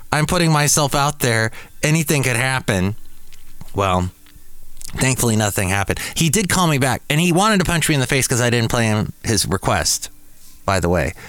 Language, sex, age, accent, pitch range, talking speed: English, male, 30-49, American, 95-145 Hz, 190 wpm